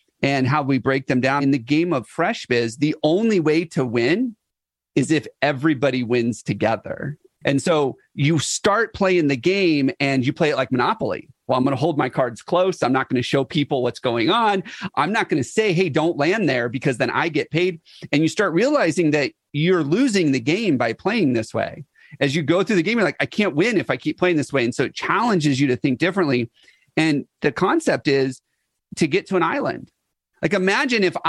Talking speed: 225 wpm